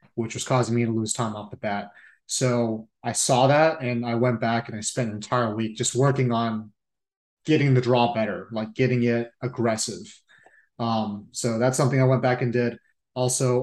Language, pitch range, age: English, 115-130 Hz, 30-49